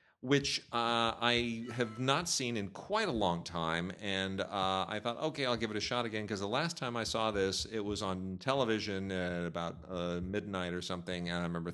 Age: 40-59